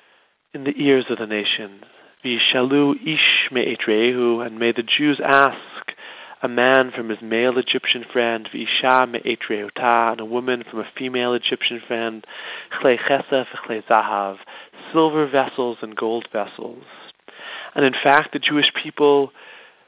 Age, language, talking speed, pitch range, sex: 30-49, English, 135 wpm, 115-140 Hz, male